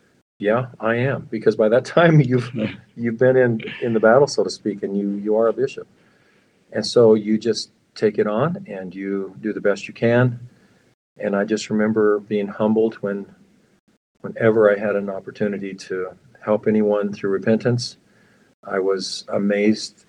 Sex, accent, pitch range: male, American, 100-115 Hz